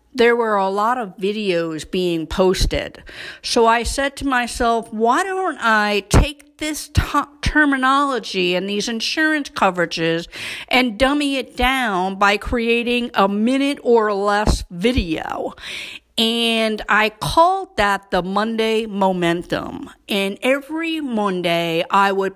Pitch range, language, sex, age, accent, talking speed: 195-260 Hz, English, female, 50-69, American, 125 wpm